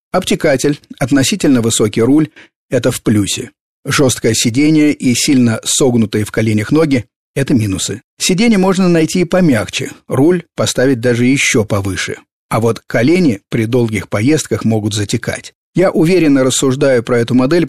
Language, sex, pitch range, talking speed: Russian, male, 110-145 Hz, 145 wpm